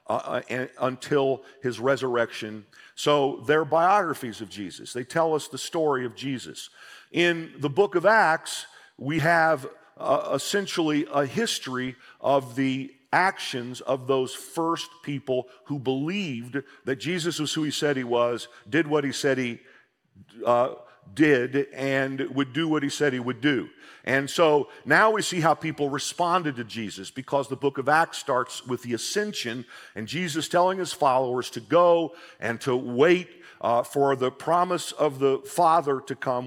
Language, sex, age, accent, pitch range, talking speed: English, male, 50-69, American, 120-150 Hz, 165 wpm